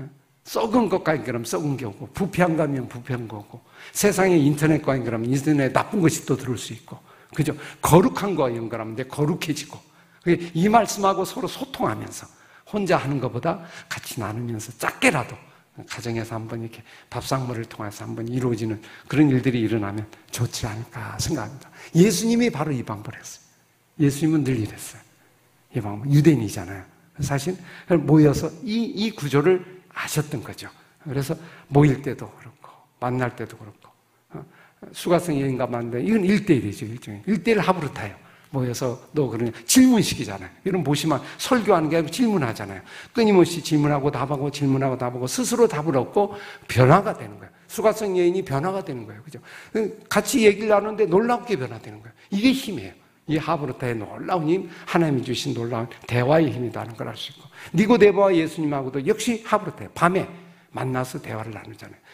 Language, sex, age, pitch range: Korean, male, 50-69, 120-175 Hz